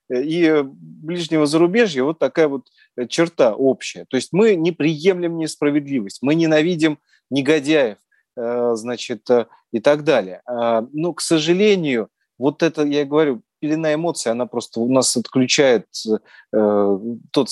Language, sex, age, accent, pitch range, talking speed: Russian, male, 30-49, native, 115-150 Hz, 125 wpm